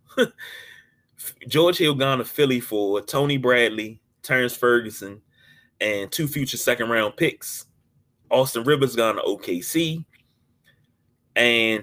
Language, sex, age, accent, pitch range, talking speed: English, male, 20-39, American, 110-140 Hz, 105 wpm